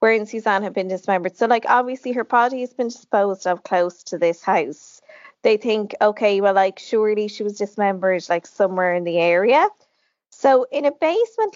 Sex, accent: female, Irish